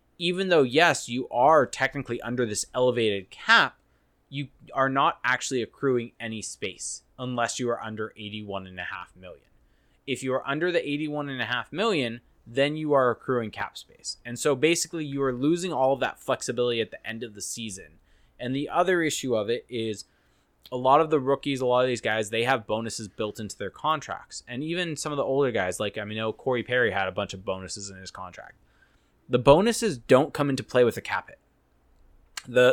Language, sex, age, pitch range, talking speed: English, male, 20-39, 110-140 Hz, 205 wpm